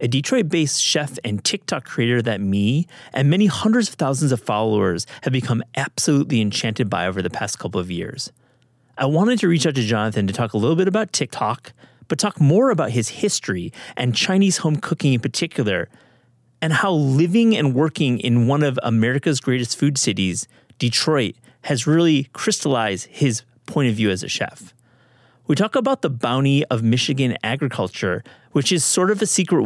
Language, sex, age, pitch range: English, male, 30-49, 115-160 Hz